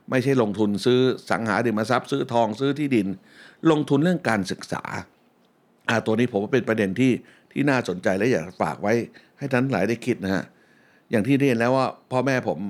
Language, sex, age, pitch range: Thai, male, 60-79, 105-130 Hz